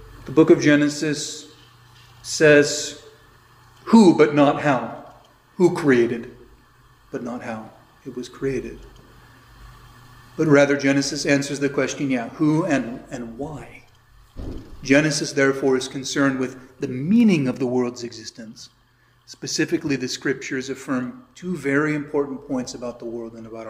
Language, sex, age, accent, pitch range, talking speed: English, male, 40-59, American, 125-150 Hz, 130 wpm